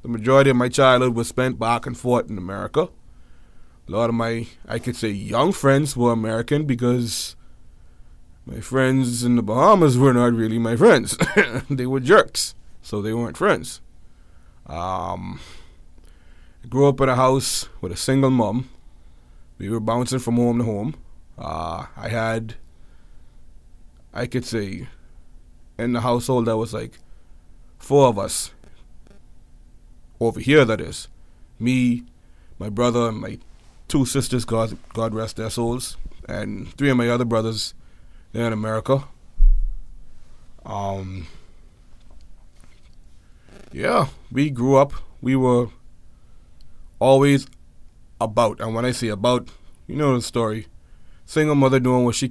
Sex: male